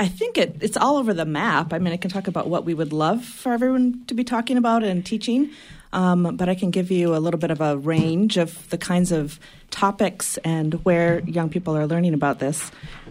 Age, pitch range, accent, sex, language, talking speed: 30-49, 160-195 Hz, American, female, English, 235 wpm